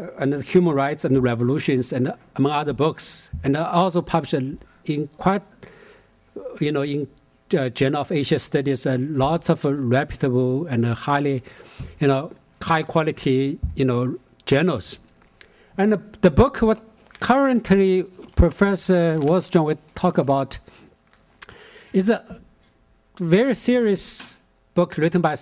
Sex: male